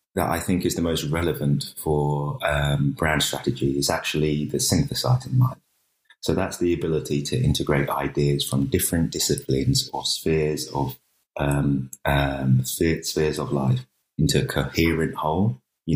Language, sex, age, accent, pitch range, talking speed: English, male, 30-49, British, 70-80 Hz, 145 wpm